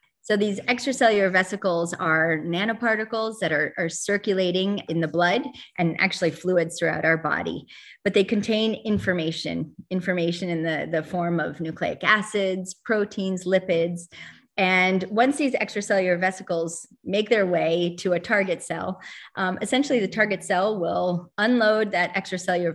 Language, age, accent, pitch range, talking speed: English, 30-49, American, 170-205 Hz, 140 wpm